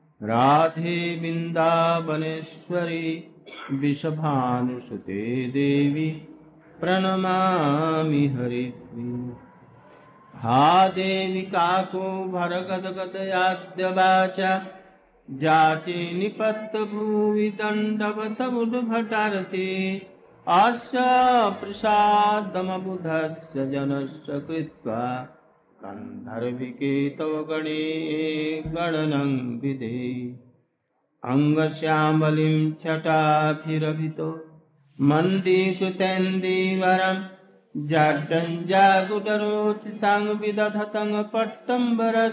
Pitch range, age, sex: 155-190 Hz, 60-79, male